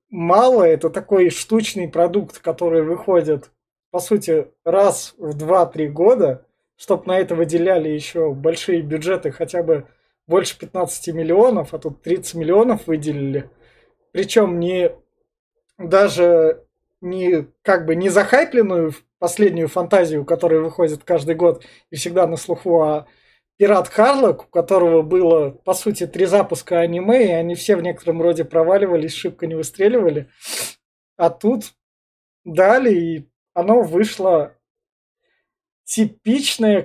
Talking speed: 120 wpm